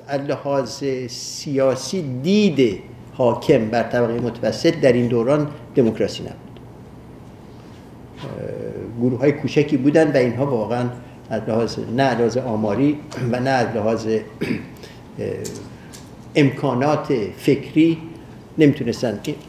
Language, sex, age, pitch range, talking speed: Persian, male, 60-79, 120-145 Hz, 85 wpm